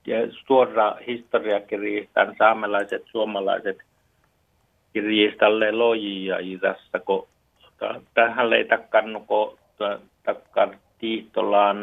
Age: 60-79